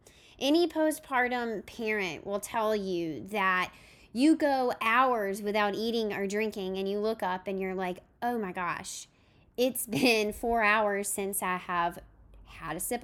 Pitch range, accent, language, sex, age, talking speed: 190-250 Hz, American, English, female, 10-29, 155 wpm